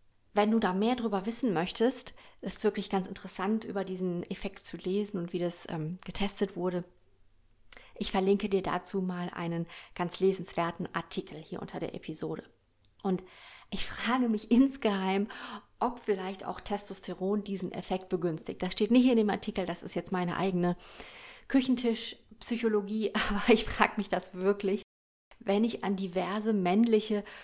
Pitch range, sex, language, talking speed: 180-220 Hz, female, German, 155 wpm